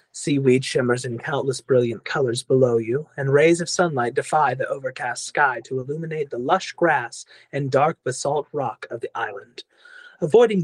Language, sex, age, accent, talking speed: English, male, 30-49, American, 165 wpm